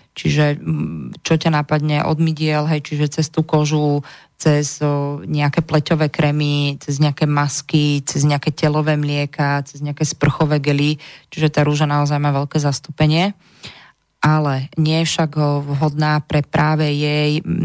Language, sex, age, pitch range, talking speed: Slovak, female, 20-39, 145-155 Hz, 135 wpm